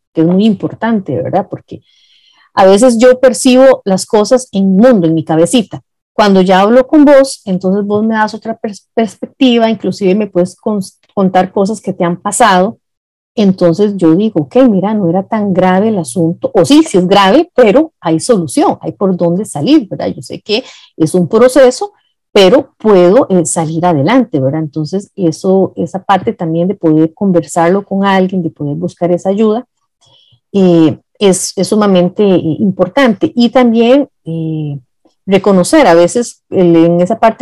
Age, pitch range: 40-59, 175-230 Hz